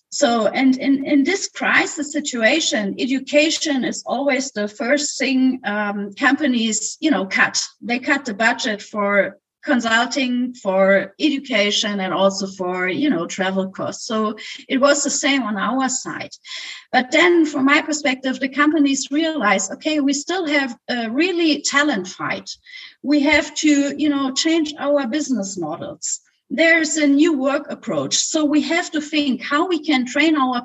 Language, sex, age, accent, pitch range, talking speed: English, female, 30-49, German, 245-300 Hz, 160 wpm